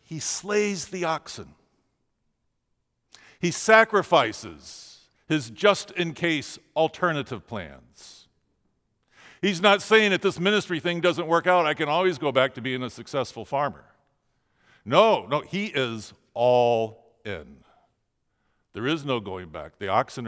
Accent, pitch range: American, 115-155 Hz